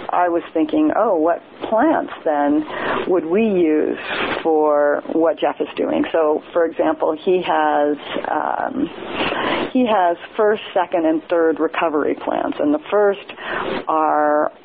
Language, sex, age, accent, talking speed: English, female, 40-59, American, 135 wpm